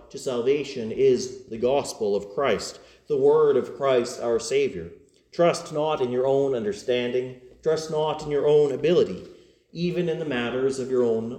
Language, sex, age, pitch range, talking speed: English, male, 40-59, 130-175 Hz, 170 wpm